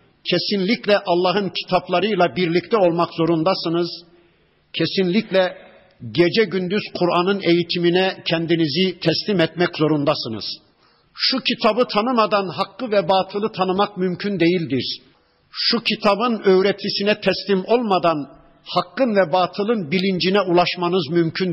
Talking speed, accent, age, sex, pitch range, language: 100 wpm, native, 60-79, male, 175-210 Hz, Turkish